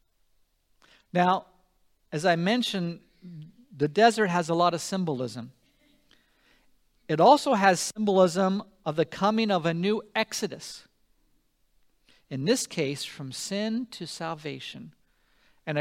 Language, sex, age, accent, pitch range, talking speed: English, male, 50-69, American, 175-245 Hz, 115 wpm